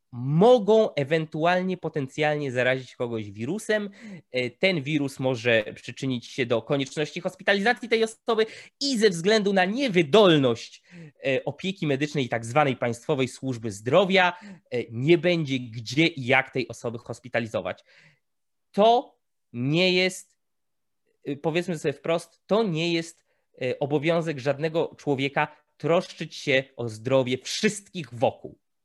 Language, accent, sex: Polish, native, male